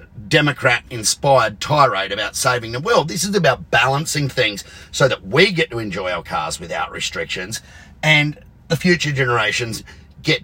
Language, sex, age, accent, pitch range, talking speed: English, male, 40-59, Australian, 120-160 Hz, 155 wpm